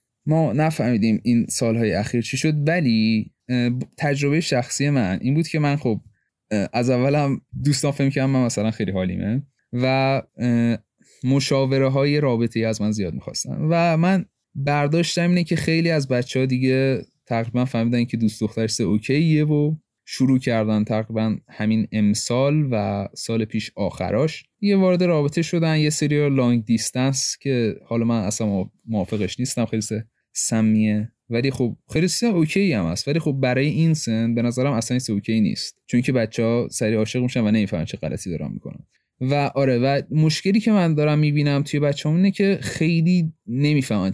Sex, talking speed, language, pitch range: male, 165 wpm, Persian, 115-145 Hz